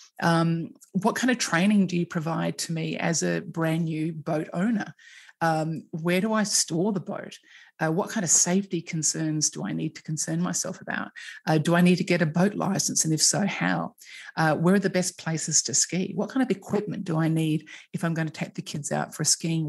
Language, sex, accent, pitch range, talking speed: English, female, Australian, 160-195 Hz, 230 wpm